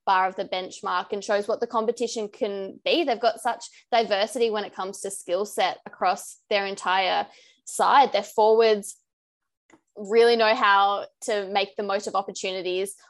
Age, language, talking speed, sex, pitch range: 20-39, English, 165 wpm, female, 195-240 Hz